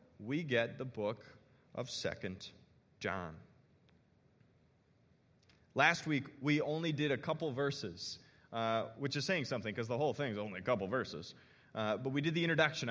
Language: English